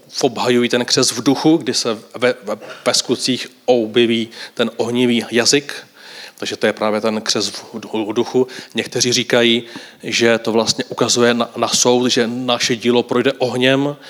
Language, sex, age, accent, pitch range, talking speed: Czech, male, 30-49, native, 115-125 Hz, 155 wpm